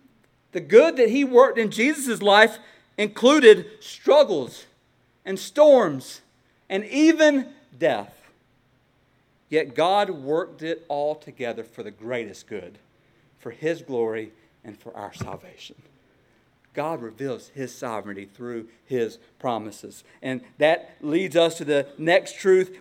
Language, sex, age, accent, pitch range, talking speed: English, male, 50-69, American, 130-185 Hz, 125 wpm